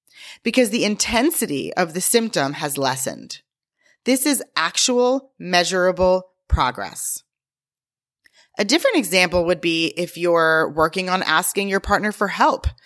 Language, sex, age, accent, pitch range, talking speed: English, female, 30-49, American, 160-240 Hz, 125 wpm